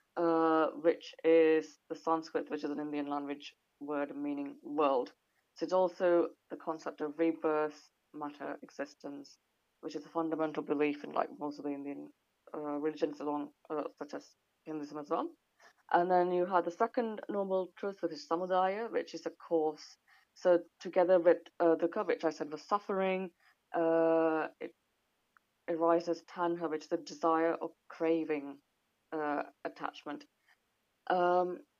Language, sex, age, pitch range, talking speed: English, female, 20-39, 150-180 Hz, 150 wpm